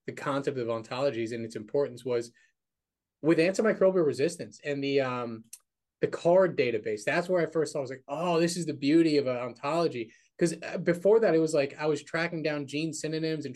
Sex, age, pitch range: male, 20-39, 125-155 Hz